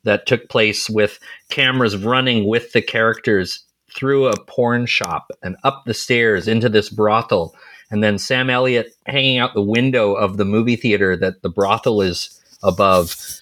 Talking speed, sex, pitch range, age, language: 165 wpm, male, 105-125 Hz, 30-49, English